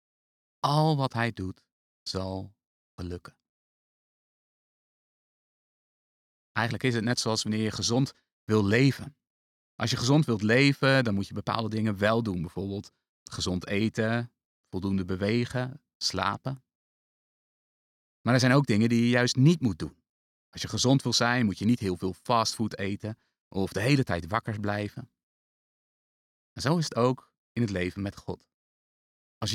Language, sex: Dutch, male